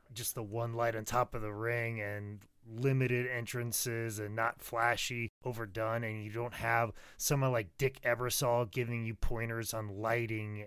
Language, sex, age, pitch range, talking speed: English, male, 20-39, 100-120 Hz, 165 wpm